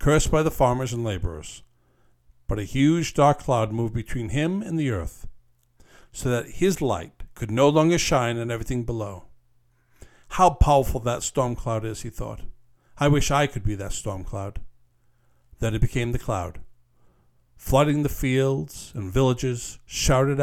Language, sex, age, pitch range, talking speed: English, male, 60-79, 105-135 Hz, 160 wpm